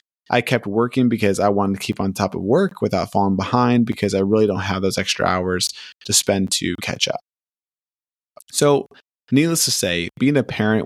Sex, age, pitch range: male, 20-39, 100-125 Hz